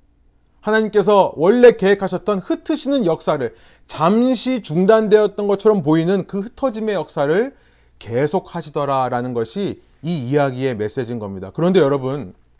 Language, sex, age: Korean, male, 30-49